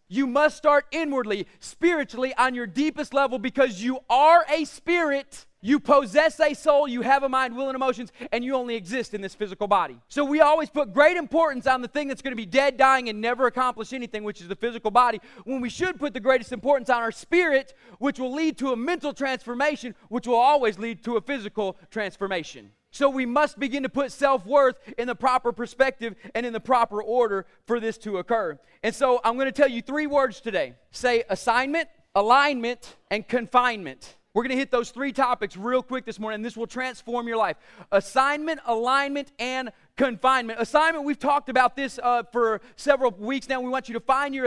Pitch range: 235-280 Hz